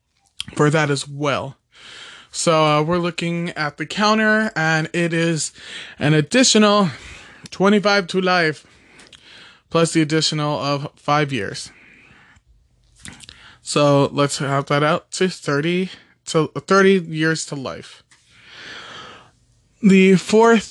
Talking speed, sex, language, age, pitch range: 115 wpm, male, English, 20-39, 145-175 Hz